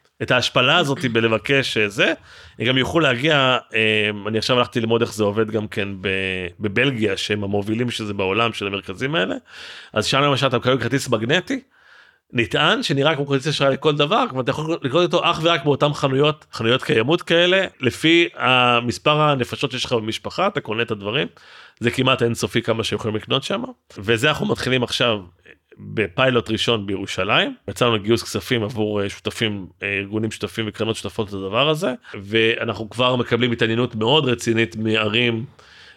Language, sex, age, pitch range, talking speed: Hebrew, male, 30-49, 110-135 Hz, 155 wpm